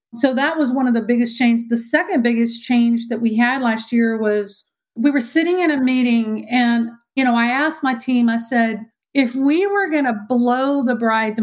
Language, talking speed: English, 215 wpm